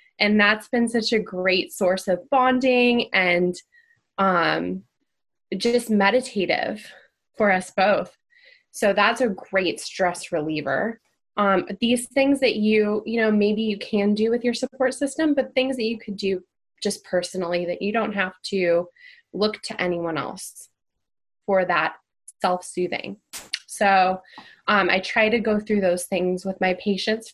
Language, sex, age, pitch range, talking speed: English, female, 20-39, 185-230 Hz, 150 wpm